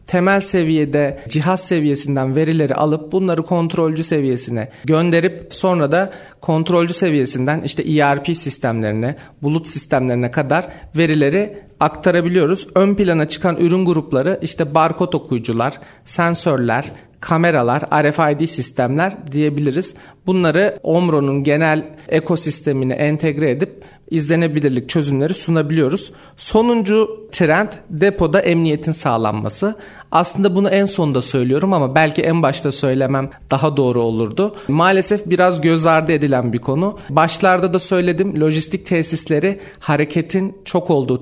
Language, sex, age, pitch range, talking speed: Turkish, male, 40-59, 145-180 Hz, 110 wpm